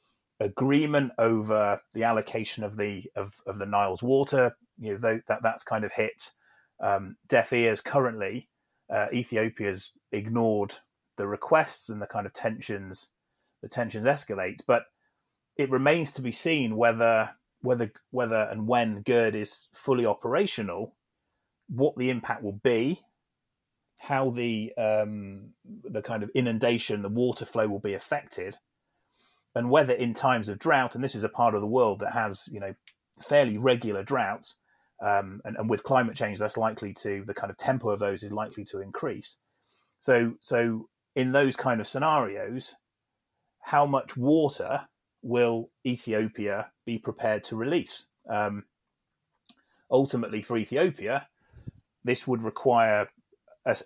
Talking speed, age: 150 wpm, 30-49